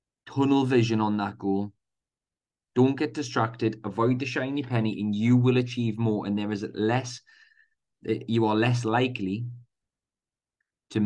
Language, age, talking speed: English, 20-39, 140 wpm